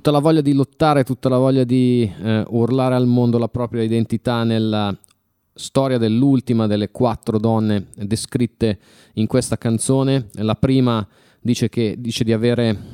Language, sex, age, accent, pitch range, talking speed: Italian, male, 30-49, native, 105-125 Hz, 155 wpm